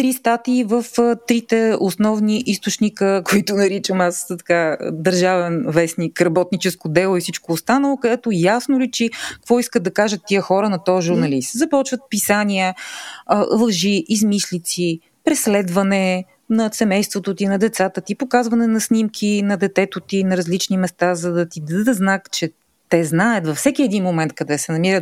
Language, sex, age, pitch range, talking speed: Bulgarian, female, 30-49, 175-225 Hz, 160 wpm